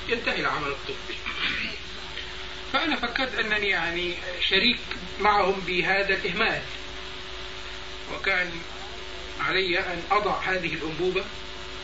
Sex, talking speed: male, 85 wpm